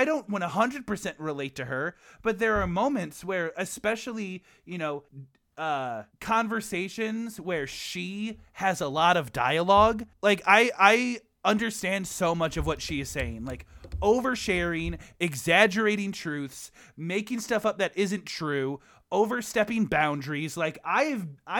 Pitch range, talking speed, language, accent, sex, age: 150-215 Hz, 140 wpm, English, American, male, 20-39